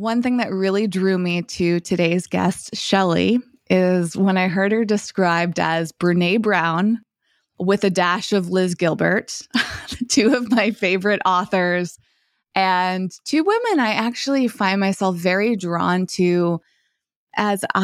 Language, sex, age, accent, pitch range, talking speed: English, female, 20-39, American, 180-215 Hz, 140 wpm